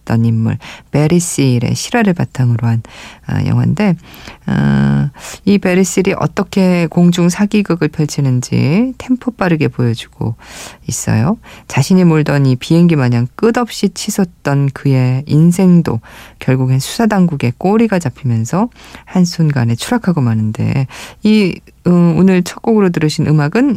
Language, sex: Korean, female